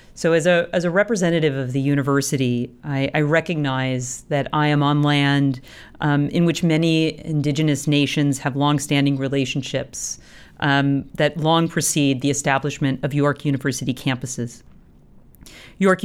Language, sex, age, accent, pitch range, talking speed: English, female, 40-59, American, 135-155 Hz, 140 wpm